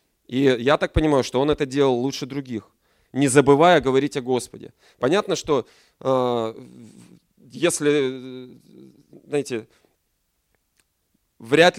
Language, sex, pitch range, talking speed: Russian, male, 125-160 Hz, 105 wpm